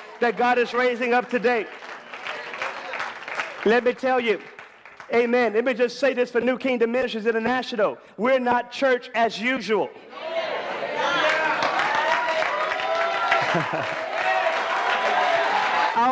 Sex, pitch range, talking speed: male, 240-290 Hz, 100 wpm